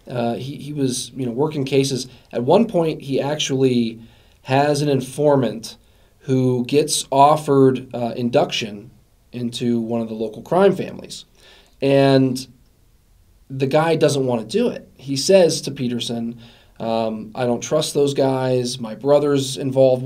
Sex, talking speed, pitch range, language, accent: male, 145 wpm, 120-140 Hz, English, American